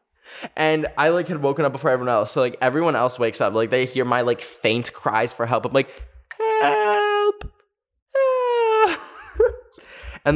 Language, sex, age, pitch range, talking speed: English, male, 10-29, 120-190 Hz, 170 wpm